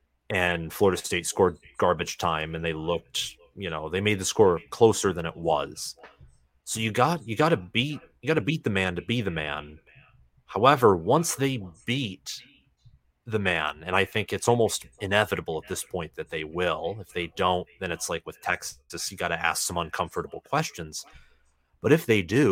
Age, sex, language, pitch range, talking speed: 30-49, male, English, 85-115 Hz, 195 wpm